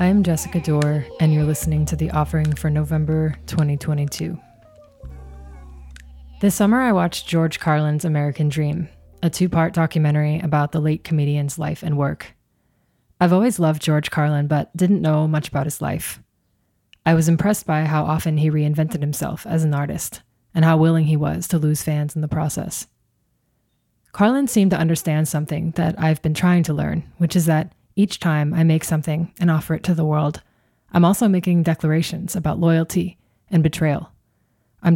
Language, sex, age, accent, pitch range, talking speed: English, female, 20-39, American, 150-170 Hz, 170 wpm